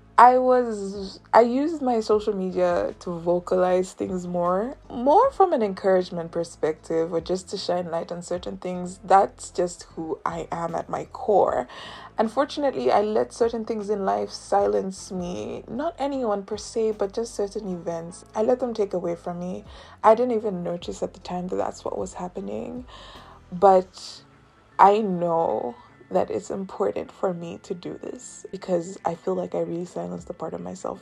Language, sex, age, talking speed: English, female, 20-39, 175 wpm